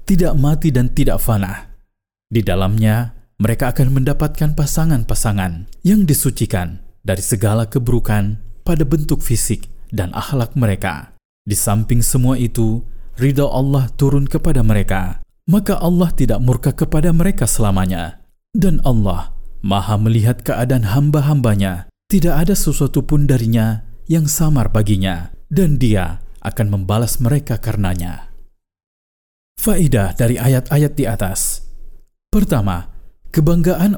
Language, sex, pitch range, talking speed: Indonesian, male, 100-145 Hz, 115 wpm